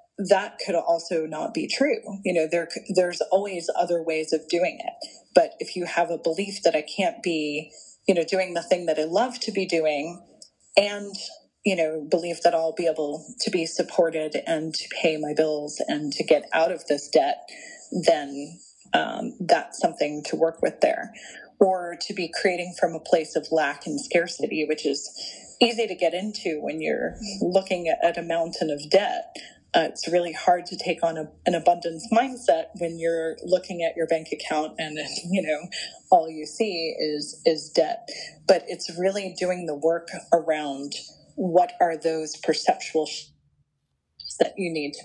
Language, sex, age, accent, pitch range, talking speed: English, female, 30-49, American, 160-195 Hz, 180 wpm